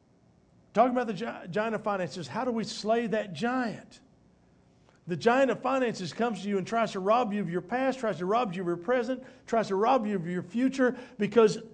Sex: male